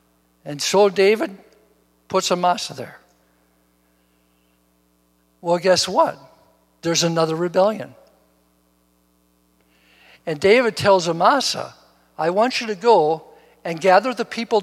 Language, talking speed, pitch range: English, 105 wpm, 145-225 Hz